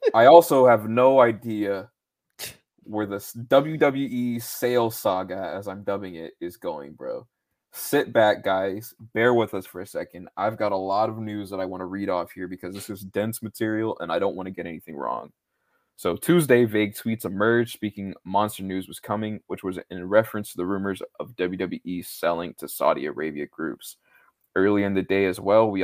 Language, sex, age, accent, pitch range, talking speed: English, male, 20-39, American, 95-115 Hz, 195 wpm